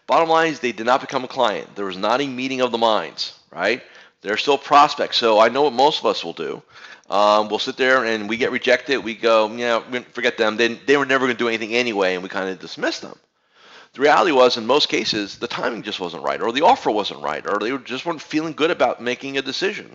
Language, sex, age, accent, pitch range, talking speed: English, male, 40-59, American, 110-140 Hz, 260 wpm